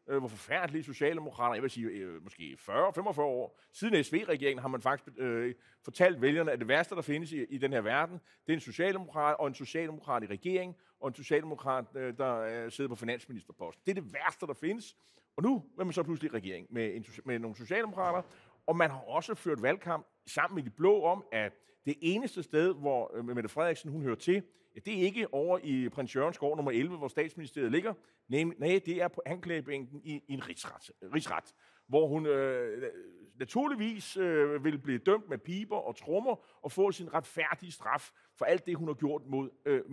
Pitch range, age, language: 135-185 Hz, 30-49, Danish